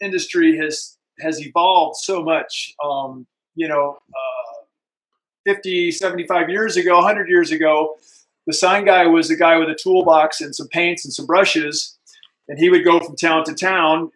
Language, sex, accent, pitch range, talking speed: English, male, American, 145-180 Hz, 170 wpm